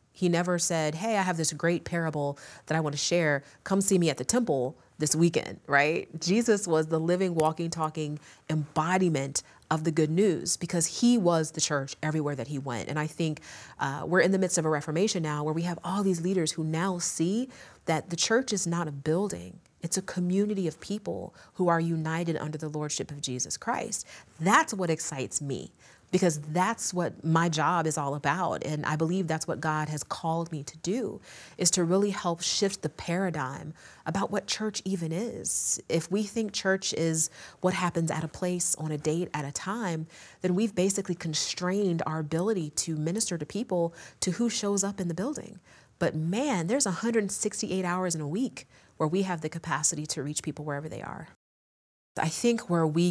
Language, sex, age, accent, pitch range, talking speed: English, female, 30-49, American, 155-185 Hz, 200 wpm